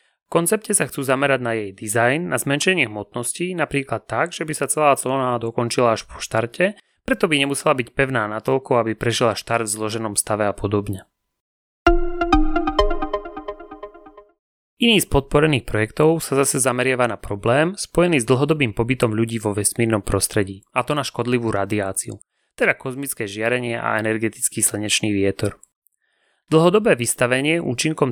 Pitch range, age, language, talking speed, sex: 110-150 Hz, 30-49, Slovak, 145 wpm, male